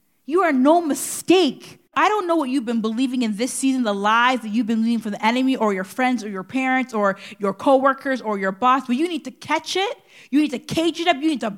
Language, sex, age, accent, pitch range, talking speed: English, female, 30-49, American, 250-320 Hz, 265 wpm